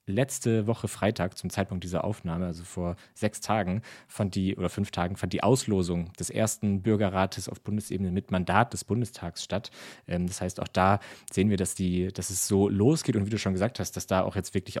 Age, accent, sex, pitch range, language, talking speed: 30-49, German, male, 95-110 Hz, German, 215 wpm